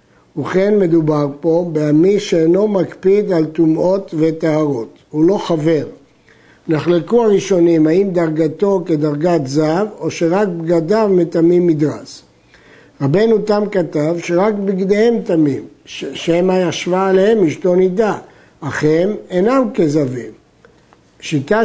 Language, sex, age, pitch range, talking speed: Hebrew, male, 60-79, 165-205 Hz, 110 wpm